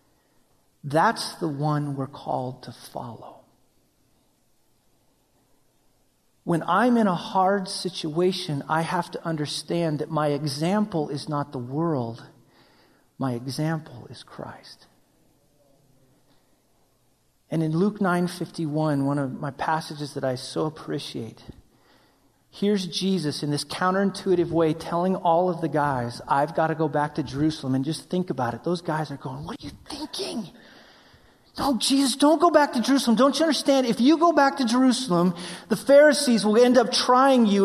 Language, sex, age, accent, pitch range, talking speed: English, male, 40-59, American, 150-235 Hz, 150 wpm